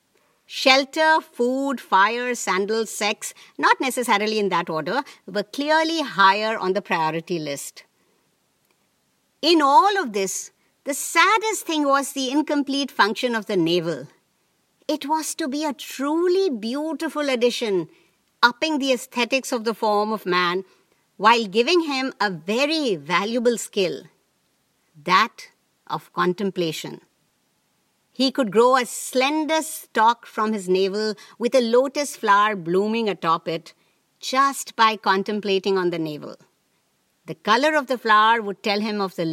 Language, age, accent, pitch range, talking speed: English, 50-69, Indian, 195-280 Hz, 135 wpm